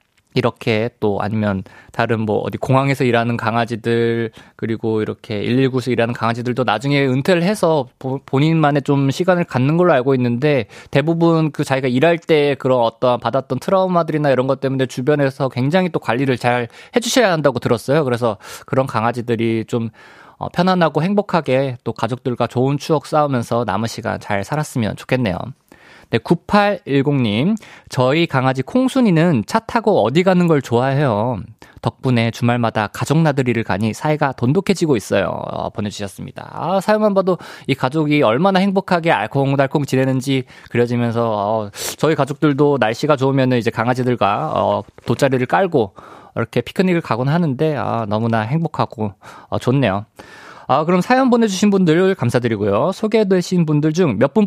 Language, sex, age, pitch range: Korean, male, 20-39, 115-160 Hz